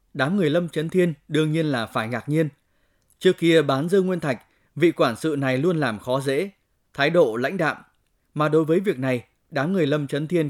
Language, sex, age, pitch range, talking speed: Vietnamese, male, 20-39, 130-165 Hz, 225 wpm